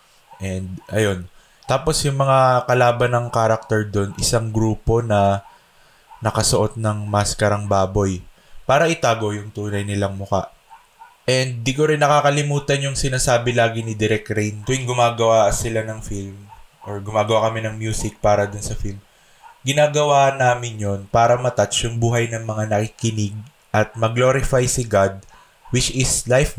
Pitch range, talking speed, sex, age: 105-130 Hz, 140 wpm, male, 20-39